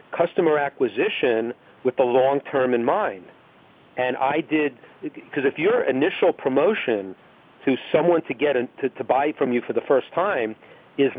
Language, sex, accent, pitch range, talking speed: English, male, American, 120-150 Hz, 160 wpm